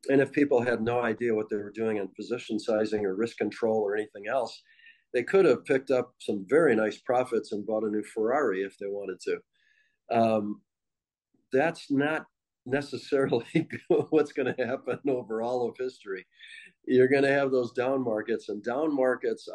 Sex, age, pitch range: male, 50-69, 110-140 Hz